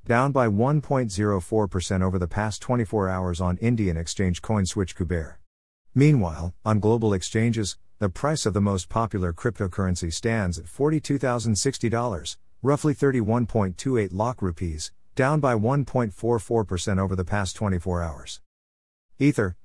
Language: English